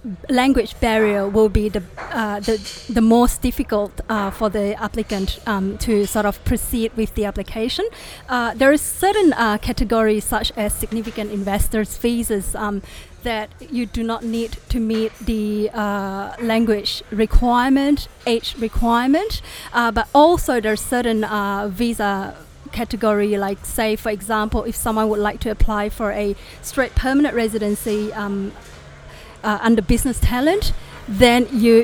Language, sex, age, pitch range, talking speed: English, female, 30-49, 210-240 Hz, 145 wpm